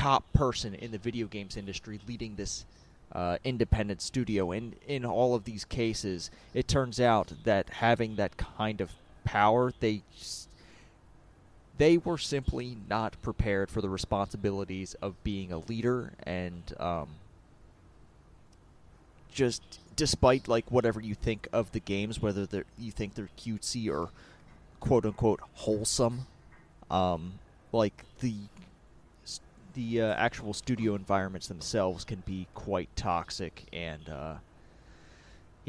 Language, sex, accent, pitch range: English, male, American, 95-120 Hz